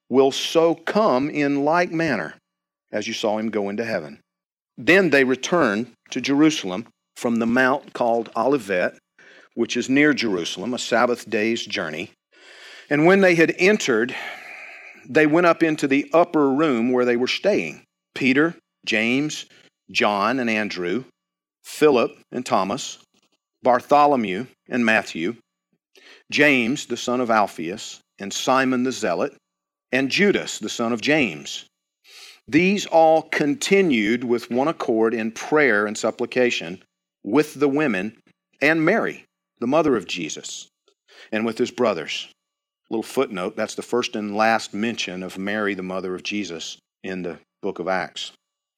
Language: English